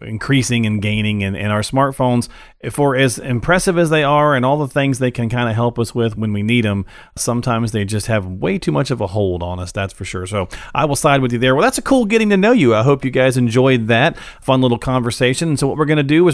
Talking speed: 275 wpm